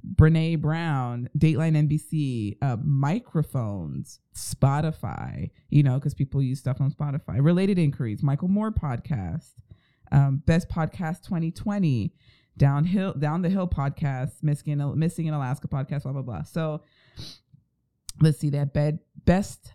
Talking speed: 130 wpm